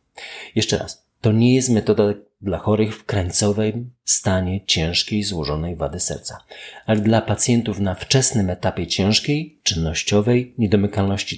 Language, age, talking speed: Polish, 40-59, 125 wpm